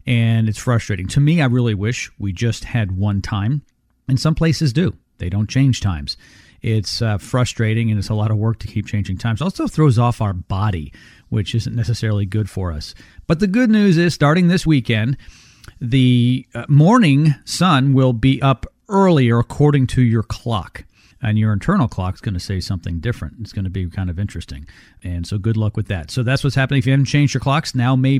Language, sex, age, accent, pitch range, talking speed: English, male, 40-59, American, 110-145 Hz, 215 wpm